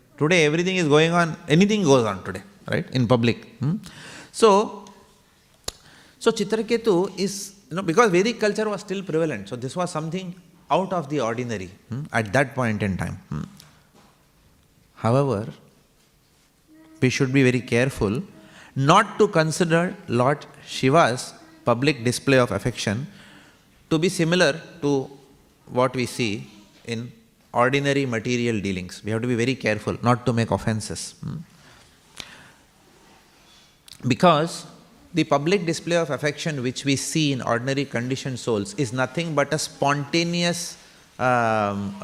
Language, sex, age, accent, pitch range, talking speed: English, male, 30-49, Indian, 125-170 Hz, 135 wpm